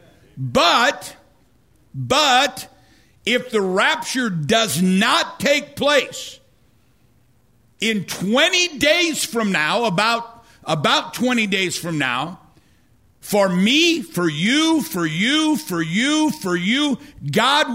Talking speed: 105 wpm